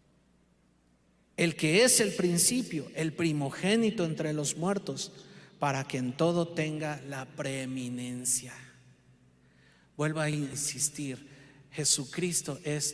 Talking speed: 100 wpm